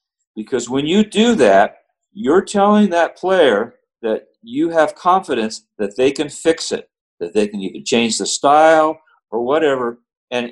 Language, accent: English, American